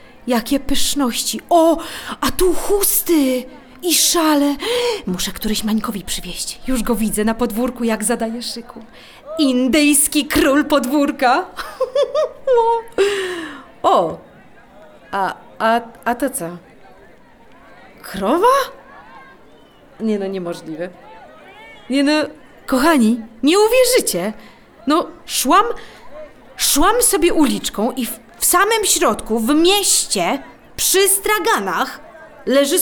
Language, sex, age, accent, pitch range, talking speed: Polish, female, 30-49, native, 220-335 Hz, 95 wpm